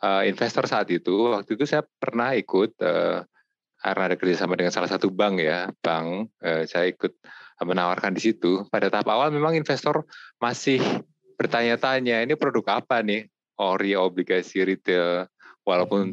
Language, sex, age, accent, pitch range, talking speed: Indonesian, male, 20-39, native, 90-110 Hz, 155 wpm